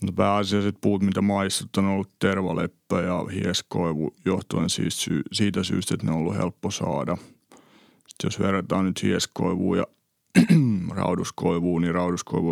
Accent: native